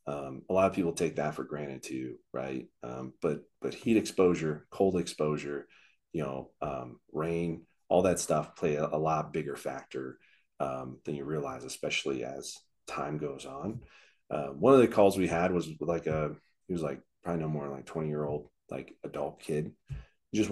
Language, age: English, 30-49